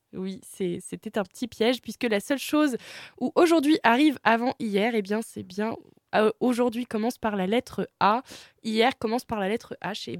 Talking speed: 195 wpm